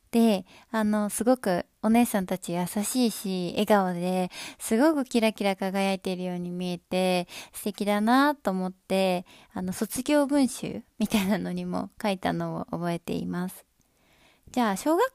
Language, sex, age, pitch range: Japanese, female, 20-39, 180-240 Hz